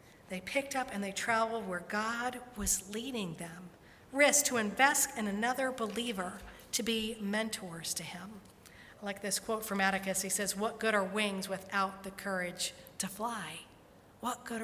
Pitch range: 190-225 Hz